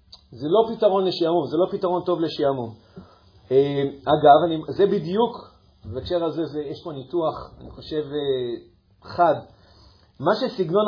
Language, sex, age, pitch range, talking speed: Hebrew, male, 40-59, 140-190 Hz, 130 wpm